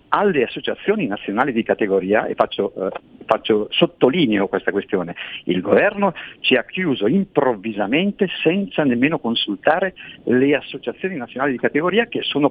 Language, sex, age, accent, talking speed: Italian, male, 50-69, native, 135 wpm